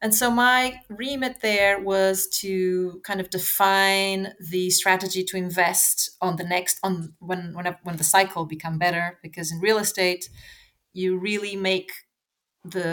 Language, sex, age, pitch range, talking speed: English, female, 30-49, 170-195 Hz, 155 wpm